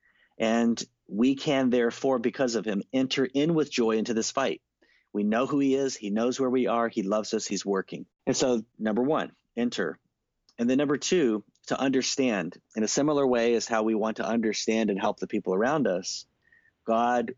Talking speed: 195 wpm